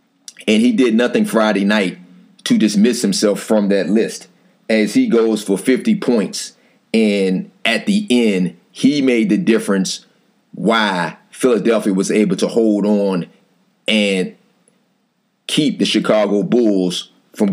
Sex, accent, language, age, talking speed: male, American, English, 30-49, 135 wpm